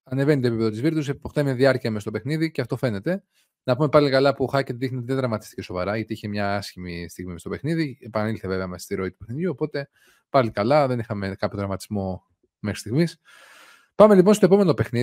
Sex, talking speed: male, 155 wpm